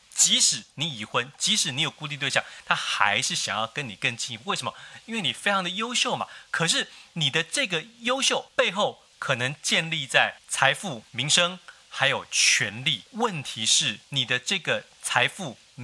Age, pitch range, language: 30-49, 125-200 Hz, Chinese